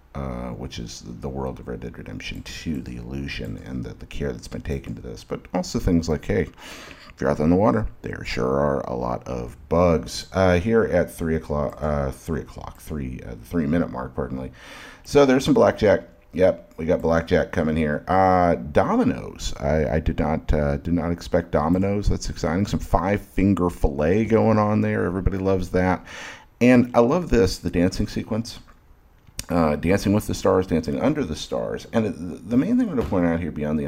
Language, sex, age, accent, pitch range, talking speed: English, male, 40-59, American, 70-90 Hz, 205 wpm